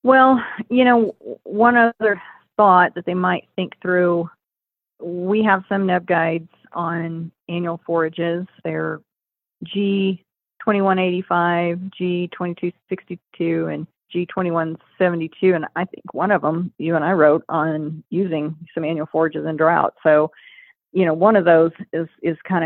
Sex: female